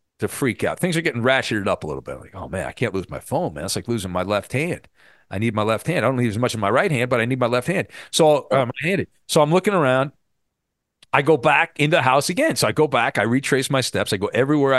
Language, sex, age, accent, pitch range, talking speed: English, male, 40-59, American, 110-150 Hz, 295 wpm